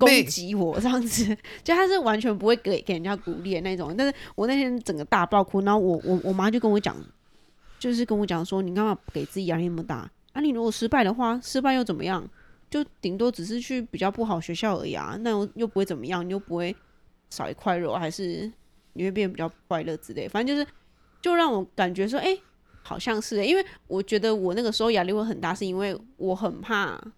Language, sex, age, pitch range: Chinese, female, 20-39, 175-230 Hz